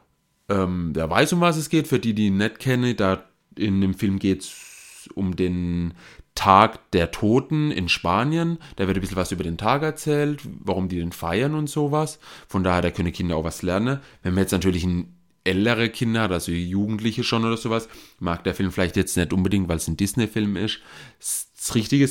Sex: male